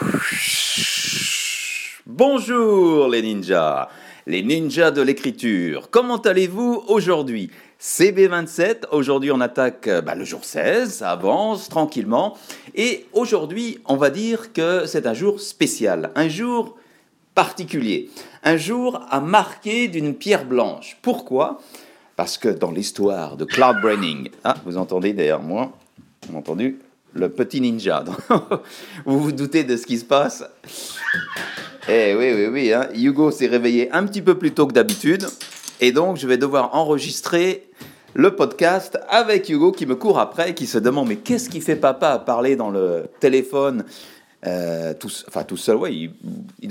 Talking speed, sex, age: 150 wpm, male, 50-69